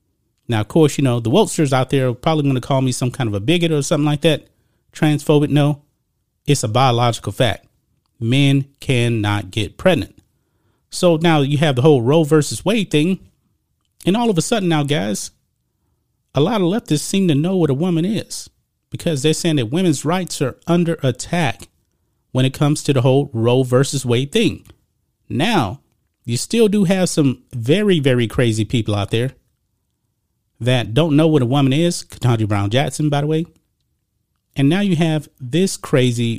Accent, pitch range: American, 125-170 Hz